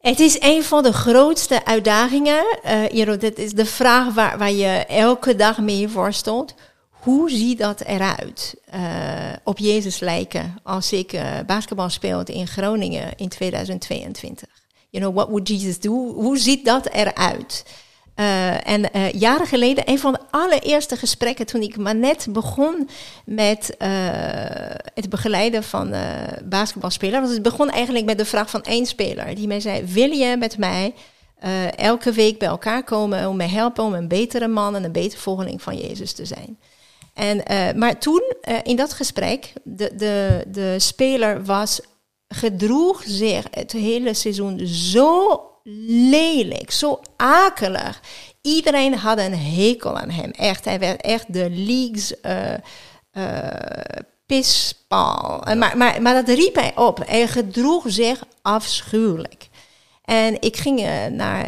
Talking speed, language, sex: 160 wpm, Dutch, female